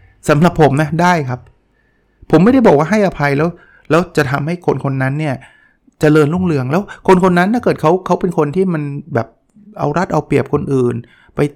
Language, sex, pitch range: Thai, male, 125-175 Hz